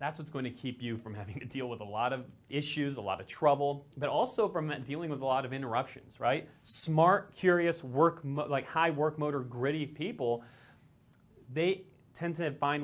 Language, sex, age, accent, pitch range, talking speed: English, male, 30-49, American, 120-145 Hz, 200 wpm